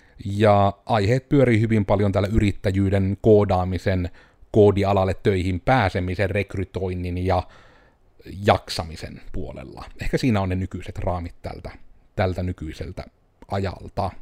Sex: male